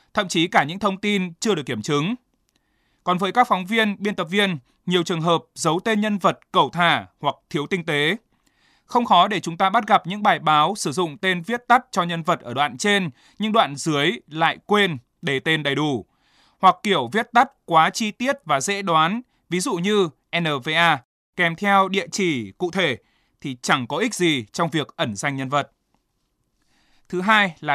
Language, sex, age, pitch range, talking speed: Vietnamese, male, 20-39, 150-200 Hz, 205 wpm